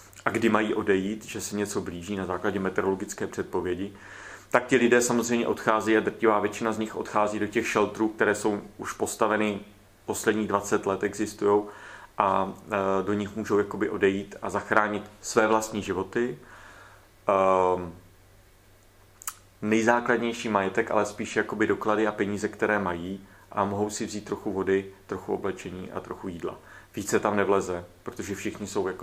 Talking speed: 145 wpm